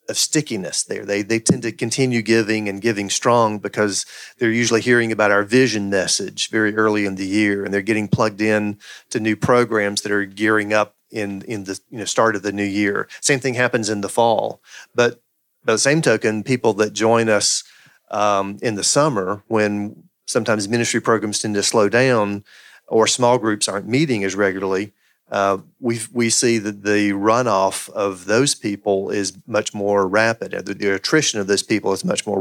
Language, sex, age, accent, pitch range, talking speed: English, male, 40-59, American, 100-120 Hz, 190 wpm